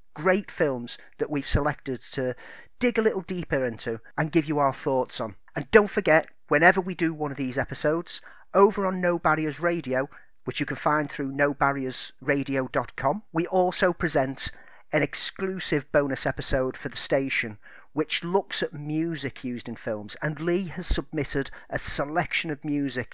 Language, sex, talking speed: English, male, 165 wpm